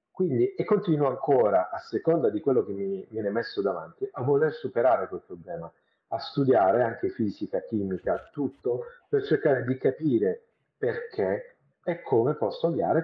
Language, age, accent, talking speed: Italian, 50-69, native, 150 wpm